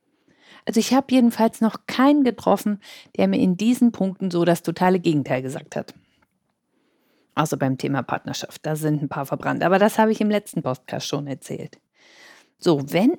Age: 50-69